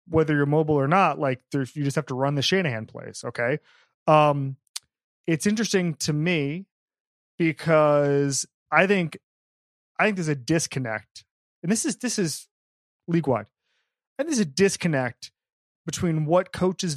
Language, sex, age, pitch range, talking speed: English, male, 30-49, 135-185 Hz, 150 wpm